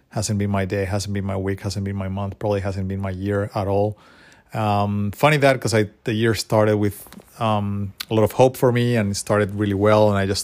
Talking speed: 240 wpm